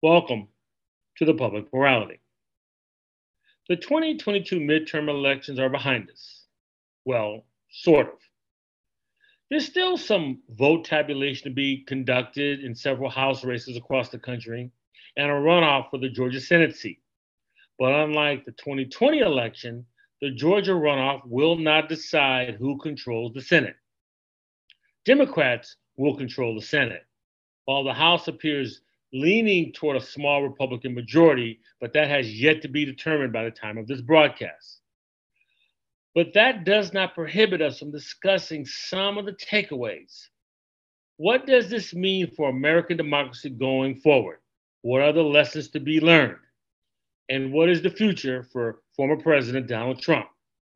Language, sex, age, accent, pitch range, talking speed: English, male, 40-59, American, 130-165 Hz, 140 wpm